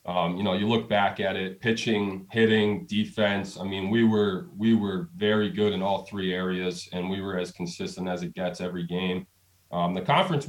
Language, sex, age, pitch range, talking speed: English, male, 20-39, 90-105 Hz, 205 wpm